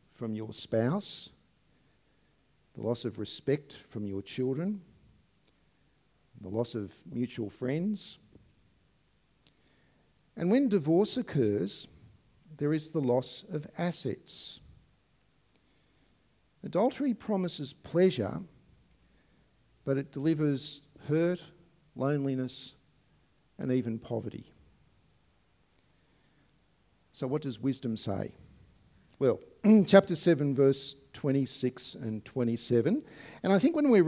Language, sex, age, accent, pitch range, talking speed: English, male, 50-69, Australian, 125-170 Hz, 95 wpm